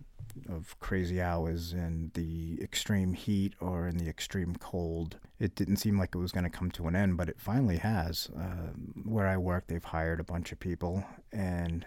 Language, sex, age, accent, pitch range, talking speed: English, male, 30-49, American, 85-100 Hz, 195 wpm